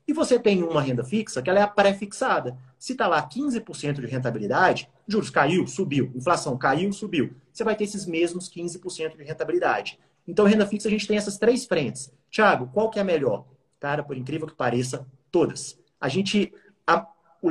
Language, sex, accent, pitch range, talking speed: Portuguese, male, Brazilian, 145-200 Hz, 190 wpm